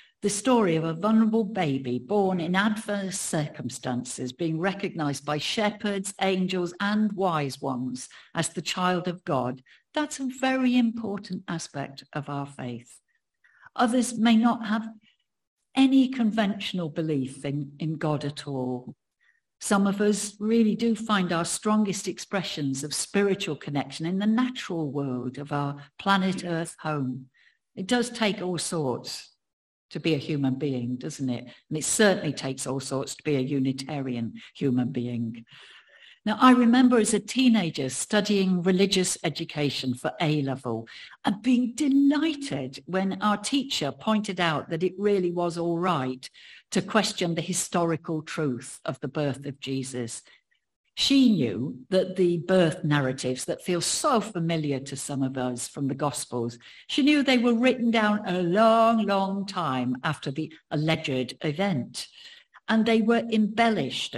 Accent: British